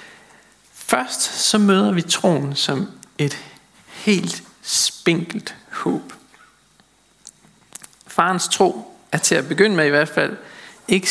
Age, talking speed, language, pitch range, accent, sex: 50-69, 115 wpm, Danish, 145-205 Hz, native, male